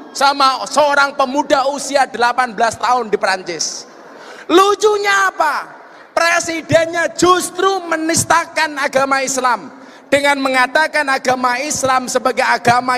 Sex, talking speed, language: male, 95 wpm, Indonesian